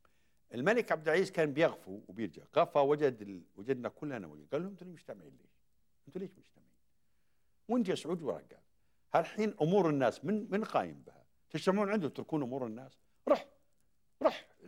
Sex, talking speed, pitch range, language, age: male, 150 wpm, 105-170 Hz, Arabic, 60-79